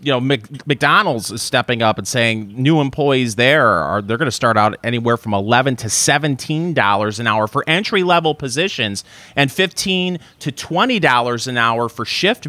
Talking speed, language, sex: 185 wpm, English, male